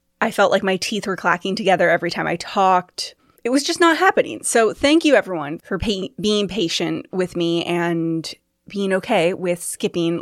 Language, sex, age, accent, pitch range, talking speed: English, female, 20-39, American, 175-245 Hz, 180 wpm